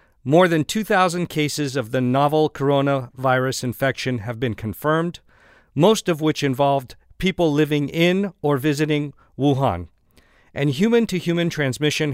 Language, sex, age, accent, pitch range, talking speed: English, male, 50-69, American, 135-165 Hz, 125 wpm